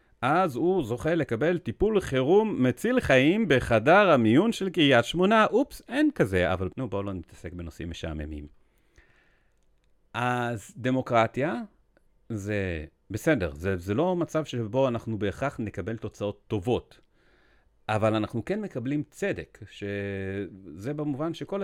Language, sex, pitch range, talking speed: Hebrew, male, 100-150 Hz, 125 wpm